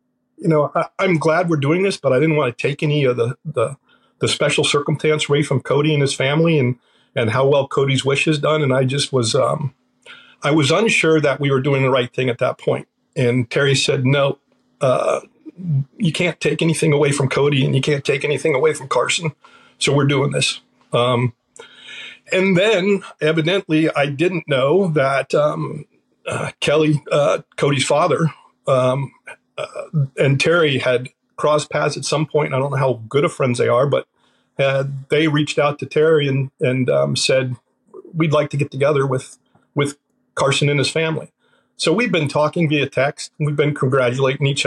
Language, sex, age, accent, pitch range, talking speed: English, male, 50-69, American, 135-155 Hz, 190 wpm